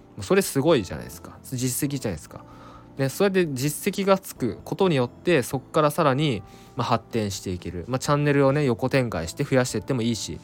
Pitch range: 100-145 Hz